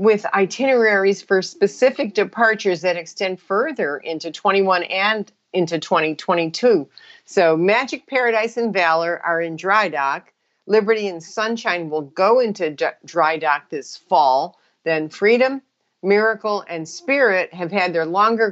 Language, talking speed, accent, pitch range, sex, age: English, 135 wpm, American, 170-220 Hz, female, 50-69